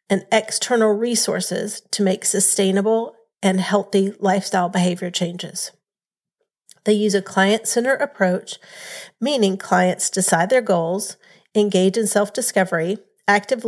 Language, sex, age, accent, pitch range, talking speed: English, female, 40-59, American, 190-225 Hz, 110 wpm